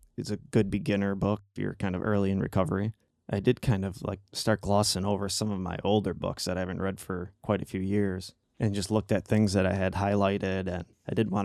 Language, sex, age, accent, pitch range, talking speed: English, male, 20-39, American, 95-105 Hz, 245 wpm